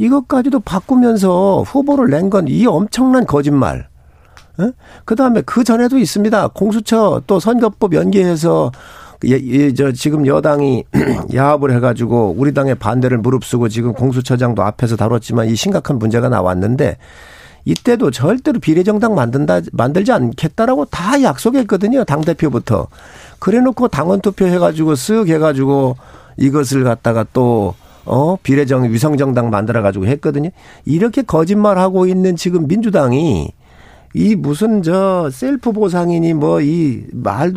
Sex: male